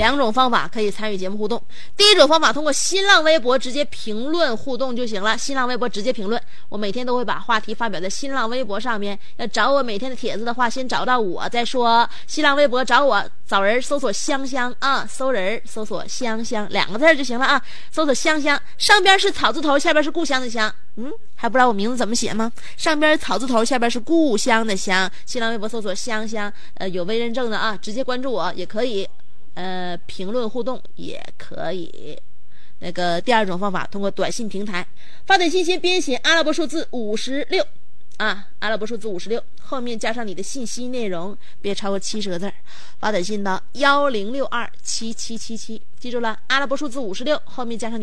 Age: 20-39